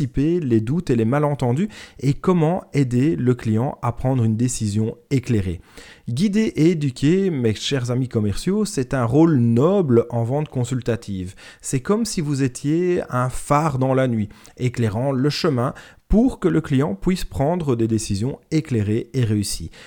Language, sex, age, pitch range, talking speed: French, male, 30-49, 115-165 Hz, 160 wpm